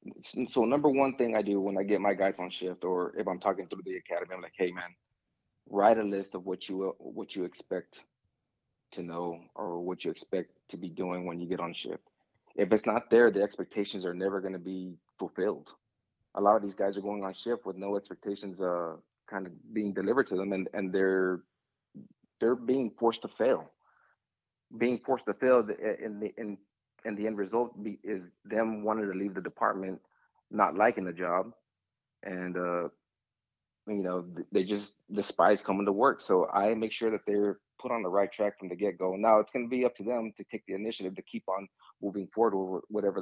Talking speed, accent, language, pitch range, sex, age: 210 wpm, American, English, 95-110 Hz, male, 30-49